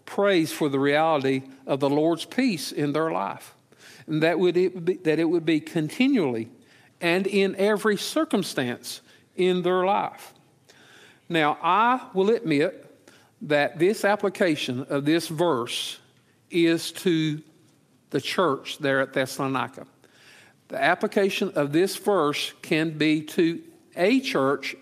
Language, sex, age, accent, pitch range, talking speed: English, male, 50-69, American, 140-180 Hz, 135 wpm